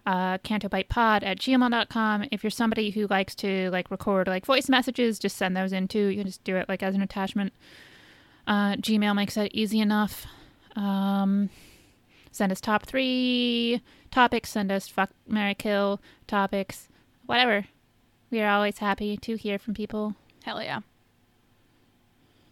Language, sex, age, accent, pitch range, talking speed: English, female, 20-39, American, 190-225 Hz, 155 wpm